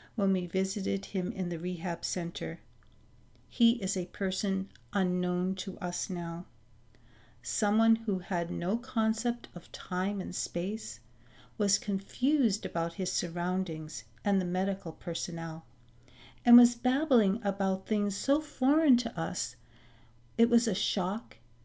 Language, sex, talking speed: English, female, 130 wpm